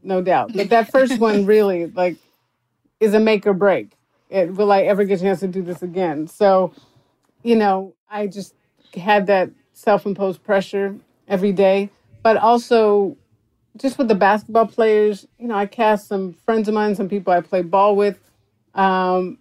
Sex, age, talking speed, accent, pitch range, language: female, 50-69, 175 wpm, American, 185-215 Hz, English